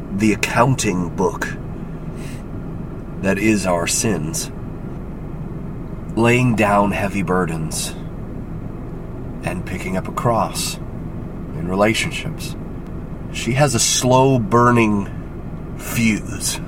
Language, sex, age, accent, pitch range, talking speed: English, male, 40-59, American, 105-130 Hz, 85 wpm